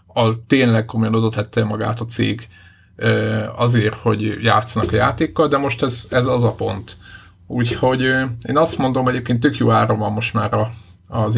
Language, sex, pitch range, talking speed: Hungarian, male, 110-125 Hz, 170 wpm